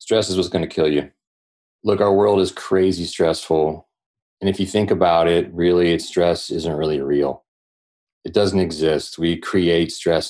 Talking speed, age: 170 wpm, 30-49